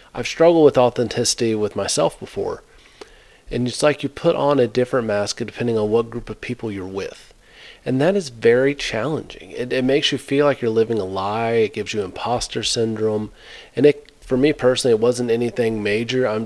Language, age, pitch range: English, 40-59, 105-125 Hz